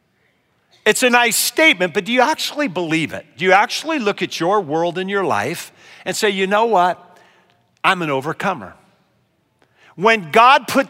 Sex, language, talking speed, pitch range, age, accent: male, English, 170 wpm, 180-255 Hz, 50-69, American